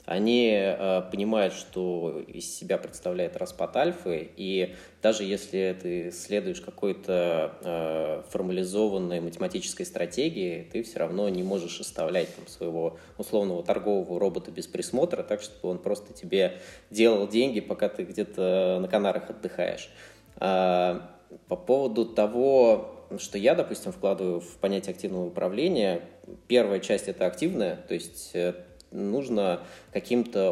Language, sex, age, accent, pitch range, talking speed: Russian, male, 20-39, native, 90-115 Hz, 130 wpm